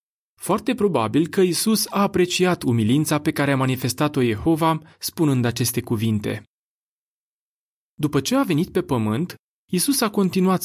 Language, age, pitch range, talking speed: Romanian, 30-49, 120-185 Hz, 135 wpm